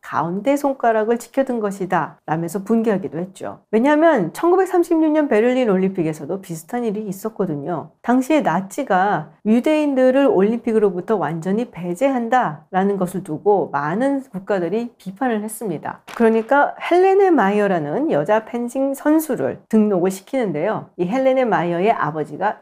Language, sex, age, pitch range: Korean, female, 40-59, 175-250 Hz